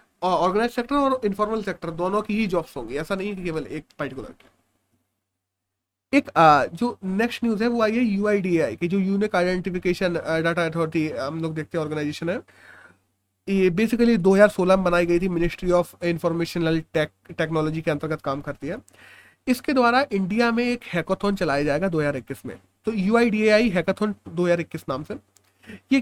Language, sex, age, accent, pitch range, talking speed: Hindi, male, 30-49, native, 160-215 Hz, 170 wpm